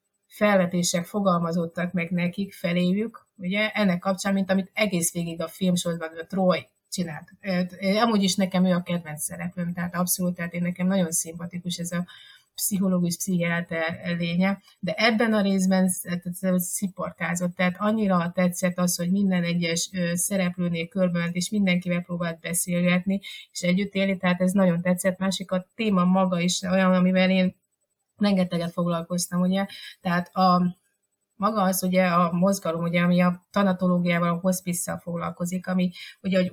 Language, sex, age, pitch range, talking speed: Hungarian, female, 30-49, 175-195 Hz, 155 wpm